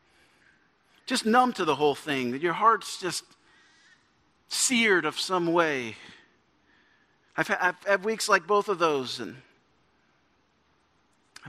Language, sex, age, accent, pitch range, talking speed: English, male, 40-59, American, 150-225 Hz, 125 wpm